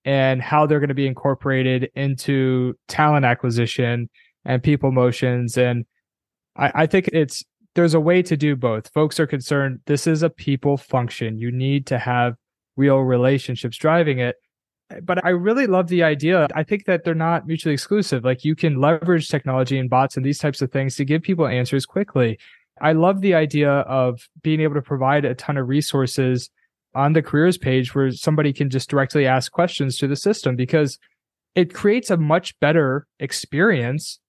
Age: 20-39